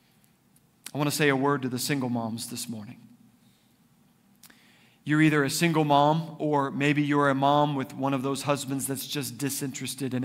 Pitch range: 130-160 Hz